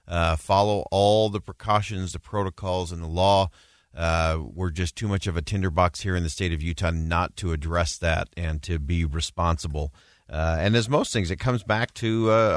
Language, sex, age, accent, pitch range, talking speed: English, male, 40-59, American, 85-105 Hz, 200 wpm